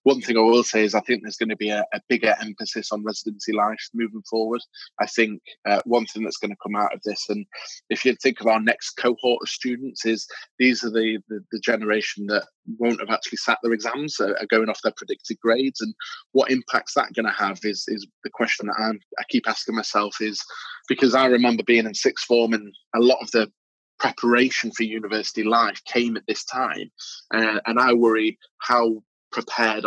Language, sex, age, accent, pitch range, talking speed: English, male, 20-39, British, 110-125 Hz, 215 wpm